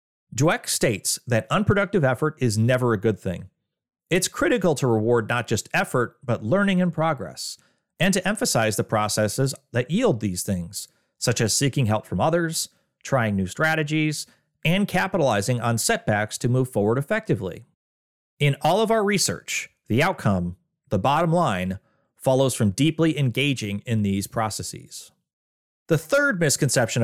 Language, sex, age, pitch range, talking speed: English, male, 30-49, 110-165 Hz, 150 wpm